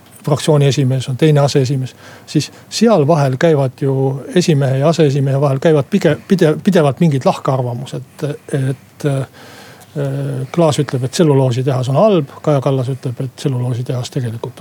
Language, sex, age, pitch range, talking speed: Finnish, male, 60-79, 130-160 Hz, 135 wpm